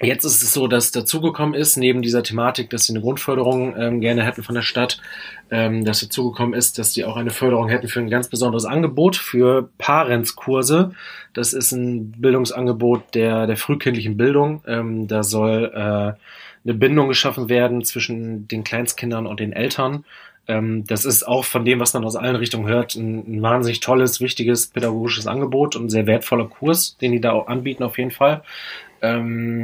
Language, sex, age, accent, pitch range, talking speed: German, male, 30-49, German, 110-125 Hz, 185 wpm